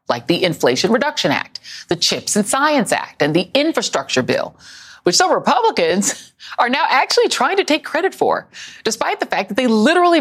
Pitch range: 180-270 Hz